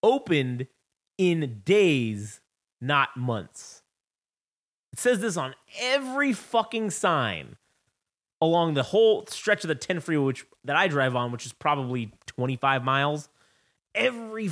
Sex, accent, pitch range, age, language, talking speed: male, American, 120-180 Hz, 30-49, English, 130 wpm